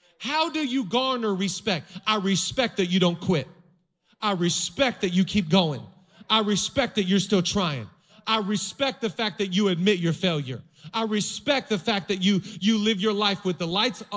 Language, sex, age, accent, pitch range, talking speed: English, male, 40-59, American, 180-225 Hz, 190 wpm